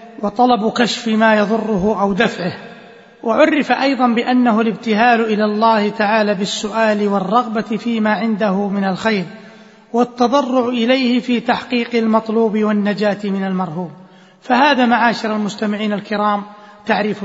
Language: Arabic